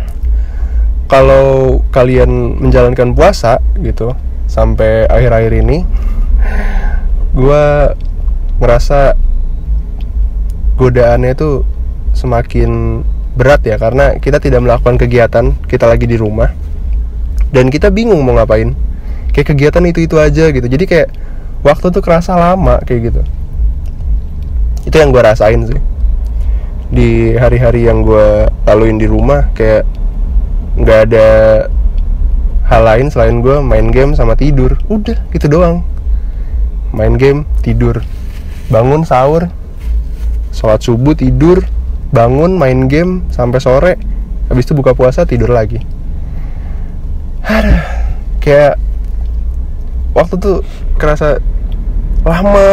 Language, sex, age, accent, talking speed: Indonesian, male, 20-39, native, 105 wpm